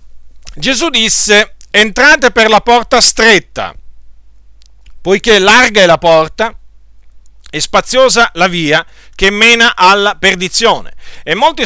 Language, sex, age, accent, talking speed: Italian, male, 40-59, native, 115 wpm